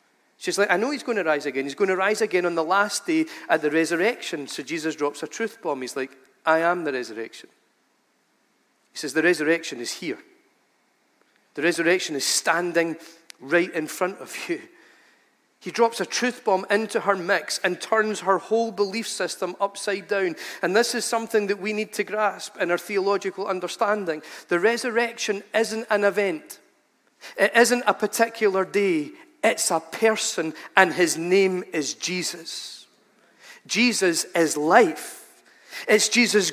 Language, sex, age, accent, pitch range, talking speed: English, male, 40-59, British, 195-250 Hz, 165 wpm